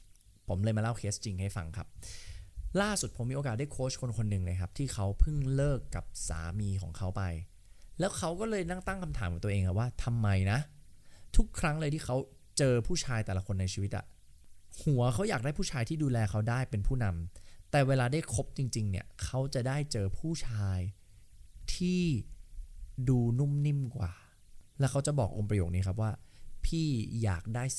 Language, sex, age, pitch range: English, male, 20-39, 95-130 Hz